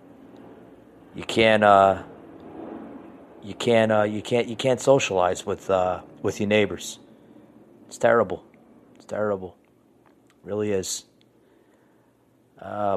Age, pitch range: 40-59, 100-120 Hz